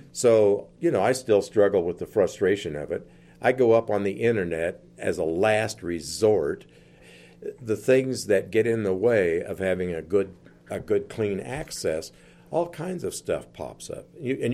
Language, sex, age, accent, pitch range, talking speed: English, male, 50-69, American, 100-135 Hz, 180 wpm